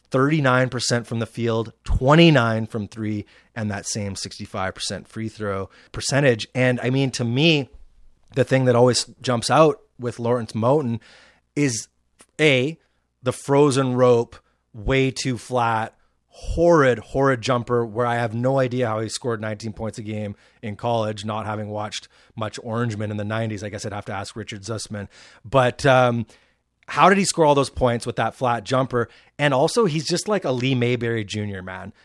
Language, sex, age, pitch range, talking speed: English, male, 30-49, 110-135 Hz, 170 wpm